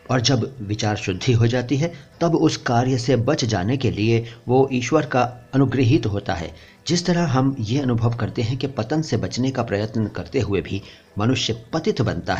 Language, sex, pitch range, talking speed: Hindi, male, 110-135 Hz, 195 wpm